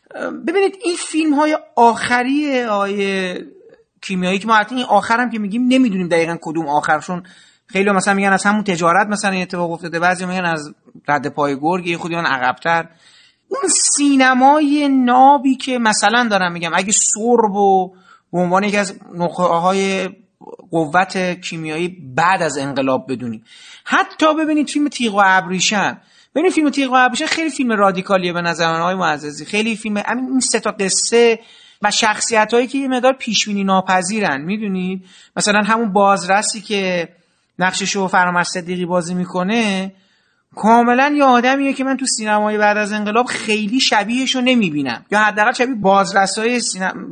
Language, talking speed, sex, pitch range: Persian, 145 wpm, male, 185-245 Hz